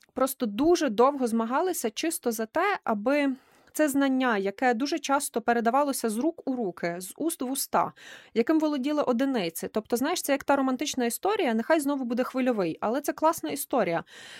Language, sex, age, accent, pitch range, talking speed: Ukrainian, female, 20-39, native, 230-285 Hz, 165 wpm